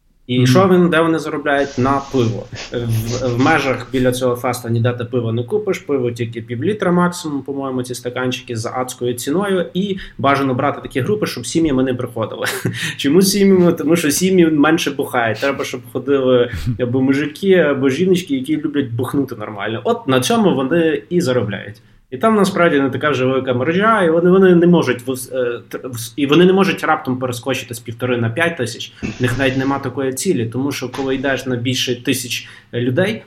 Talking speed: 180 wpm